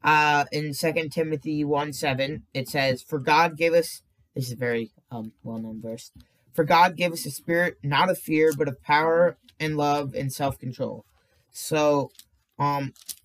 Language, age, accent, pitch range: English, 20-39, American, 130-150 Hz